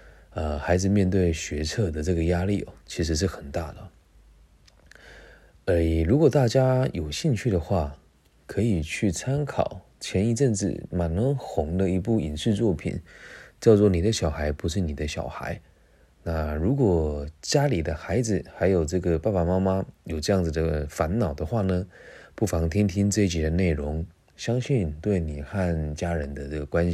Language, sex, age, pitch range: Chinese, male, 30-49, 80-105 Hz